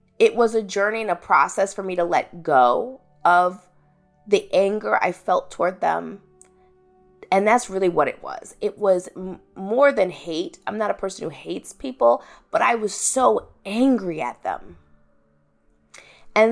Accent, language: American, English